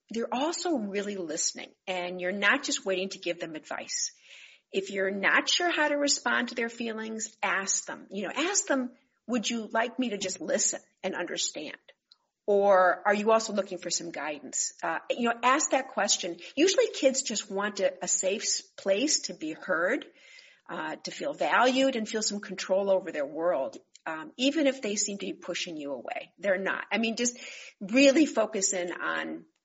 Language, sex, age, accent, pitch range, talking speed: English, female, 50-69, American, 185-270 Hz, 190 wpm